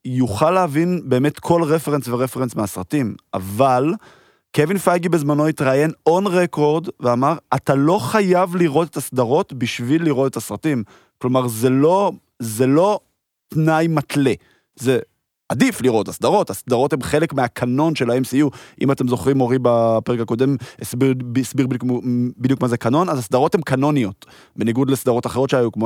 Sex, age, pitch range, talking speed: male, 20-39, 120-165 Hz, 135 wpm